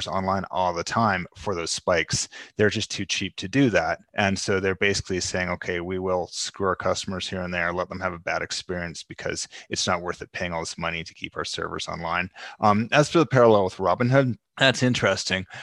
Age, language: 30-49, English